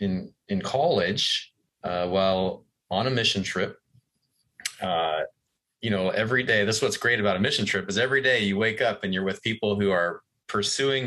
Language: English